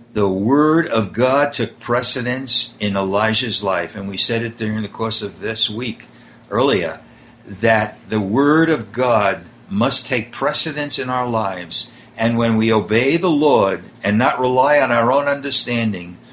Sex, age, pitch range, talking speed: male, 60-79, 105-135 Hz, 160 wpm